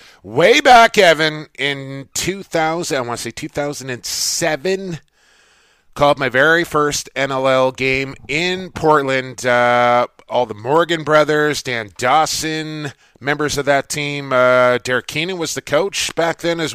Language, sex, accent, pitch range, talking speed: English, male, American, 120-155 Hz, 135 wpm